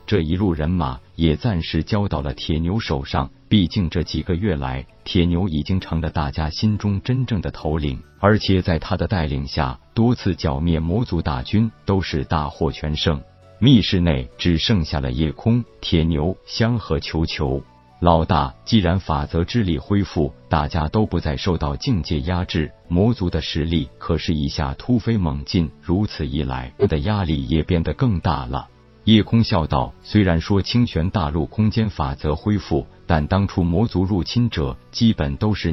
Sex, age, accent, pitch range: male, 50-69, native, 75-100 Hz